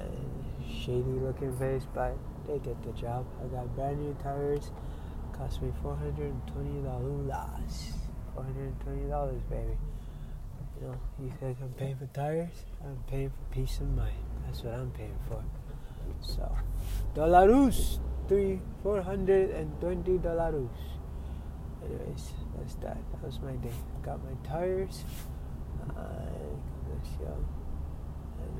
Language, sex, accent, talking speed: English, male, American, 125 wpm